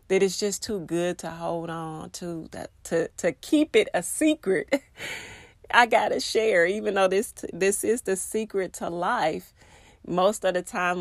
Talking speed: 180 wpm